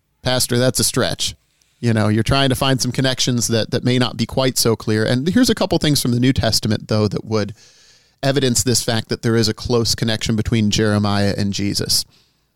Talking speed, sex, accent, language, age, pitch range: 215 wpm, male, American, English, 40-59, 110-130 Hz